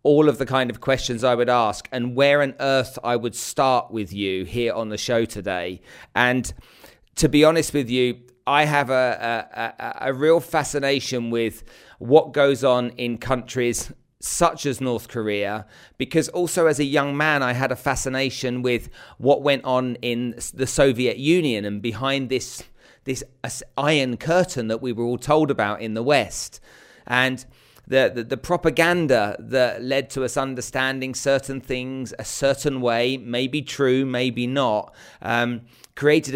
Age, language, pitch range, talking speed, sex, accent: 40-59, English, 120-145 Hz, 165 wpm, male, British